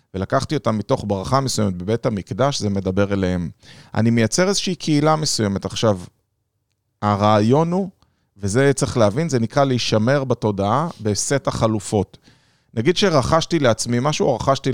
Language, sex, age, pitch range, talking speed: Hebrew, male, 30-49, 110-145 Hz, 135 wpm